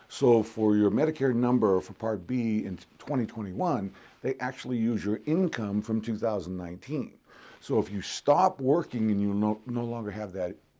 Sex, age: male, 50-69